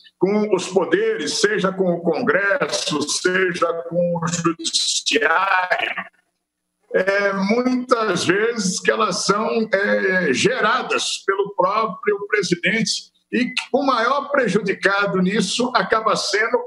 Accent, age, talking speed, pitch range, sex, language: Brazilian, 60-79, 105 wpm, 185-245 Hz, male, Portuguese